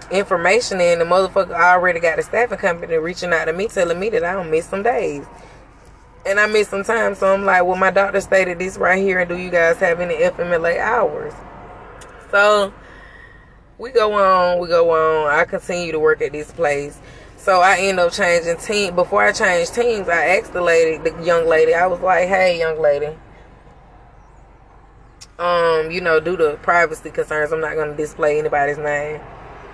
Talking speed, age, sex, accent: 190 wpm, 20-39, female, American